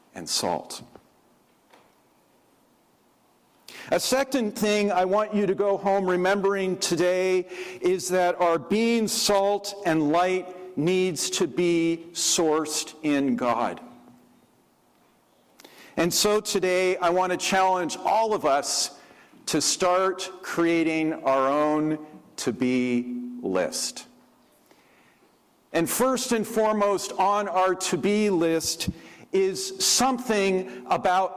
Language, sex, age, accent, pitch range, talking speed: English, male, 50-69, American, 145-195 Hz, 105 wpm